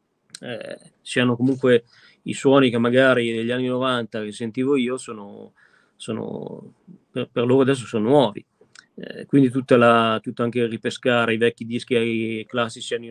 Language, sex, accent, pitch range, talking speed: Italian, male, native, 115-130 Hz, 155 wpm